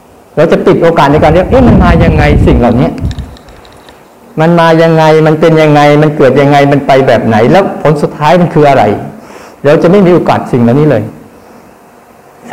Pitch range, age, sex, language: 135-185 Hz, 60-79, male, Thai